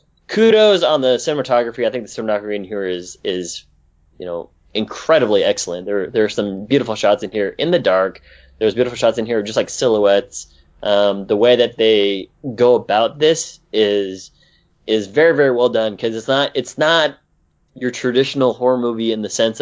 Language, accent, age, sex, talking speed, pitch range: English, American, 20-39, male, 185 wpm, 105-145 Hz